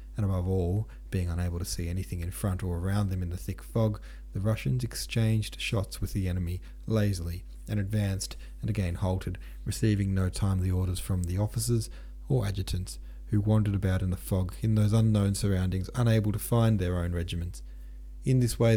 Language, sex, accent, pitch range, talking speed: English, male, Australian, 90-110 Hz, 185 wpm